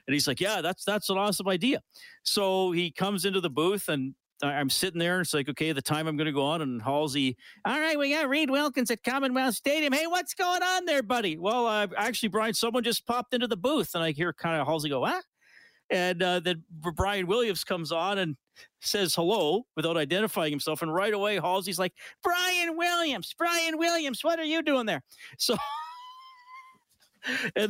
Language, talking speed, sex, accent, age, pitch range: English, 210 wpm, male, American, 50-69, 160-245 Hz